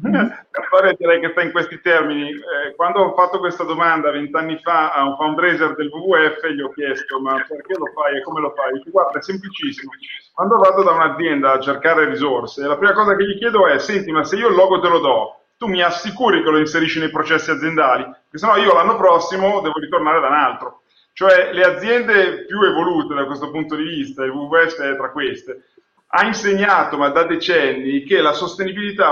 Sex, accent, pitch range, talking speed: male, native, 150-195 Hz, 210 wpm